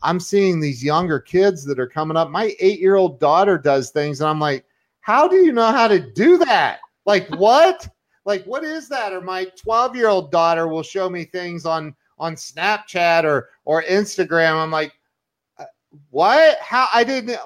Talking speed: 175 wpm